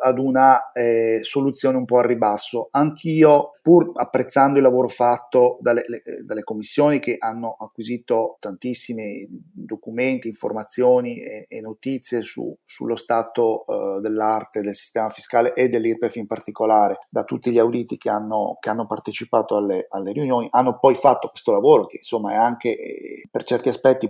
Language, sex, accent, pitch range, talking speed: Italian, male, native, 115-130 Hz, 160 wpm